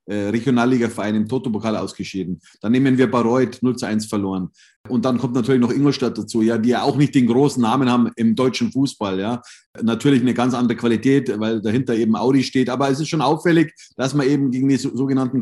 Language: German